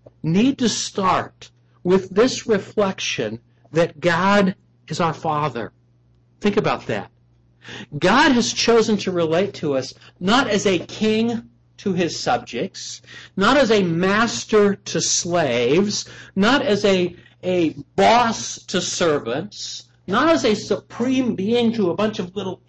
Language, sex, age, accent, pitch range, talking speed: English, male, 60-79, American, 120-200 Hz, 135 wpm